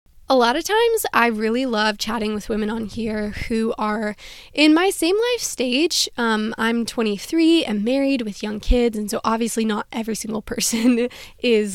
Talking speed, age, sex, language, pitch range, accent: 180 wpm, 10-29, female, English, 215-255 Hz, American